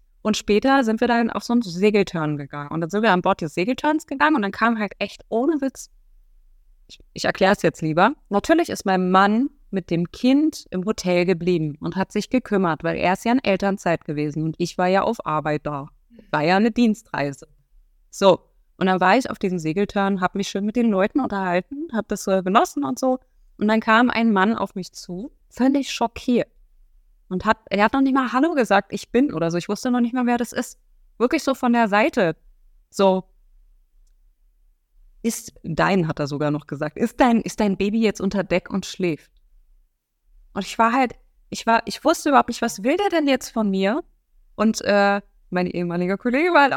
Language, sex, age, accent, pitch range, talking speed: German, female, 20-39, German, 180-240 Hz, 210 wpm